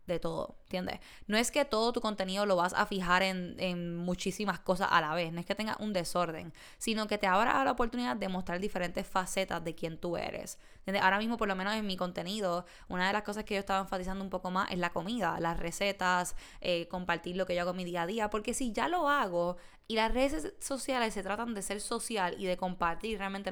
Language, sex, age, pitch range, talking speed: Spanish, female, 10-29, 180-220 Hz, 240 wpm